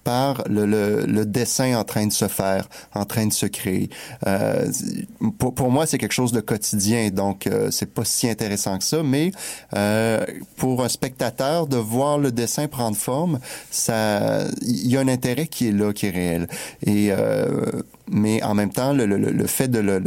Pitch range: 100-125 Hz